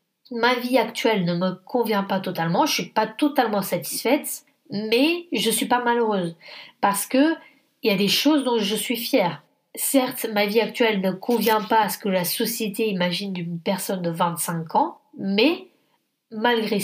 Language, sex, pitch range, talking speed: French, female, 205-270 Hz, 180 wpm